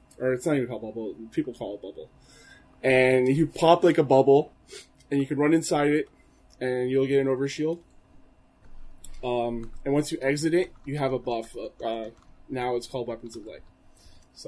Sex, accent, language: male, American, English